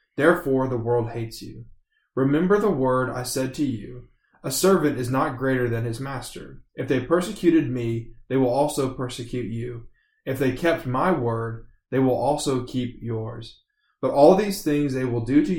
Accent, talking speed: American, 180 wpm